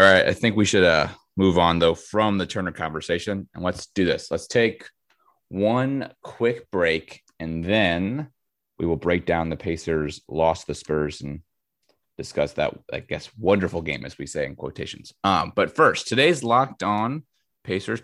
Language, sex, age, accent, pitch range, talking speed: English, male, 30-49, American, 85-105 Hz, 175 wpm